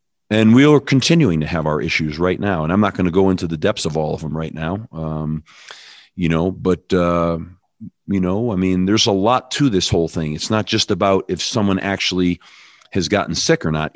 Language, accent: English, American